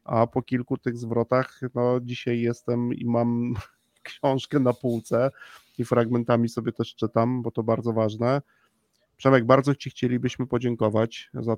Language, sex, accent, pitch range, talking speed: Polish, male, native, 115-130 Hz, 145 wpm